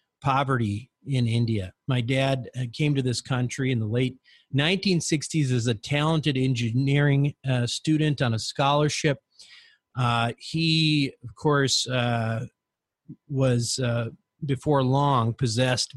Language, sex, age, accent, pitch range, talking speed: English, male, 40-59, American, 120-150 Hz, 120 wpm